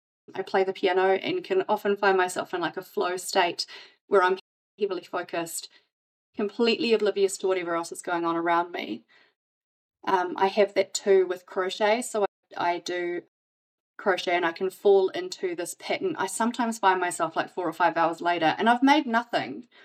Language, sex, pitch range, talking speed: English, female, 185-235 Hz, 185 wpm